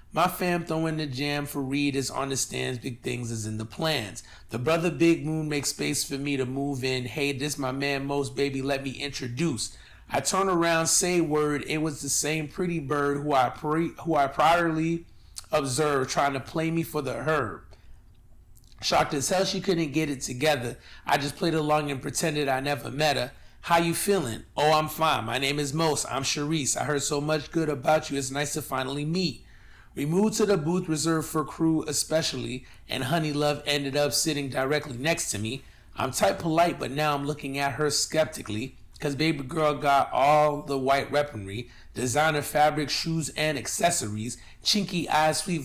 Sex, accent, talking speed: male, American, 195 wpm